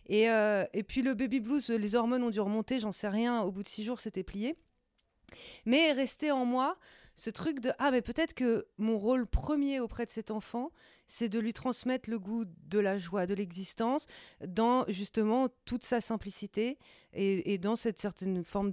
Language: French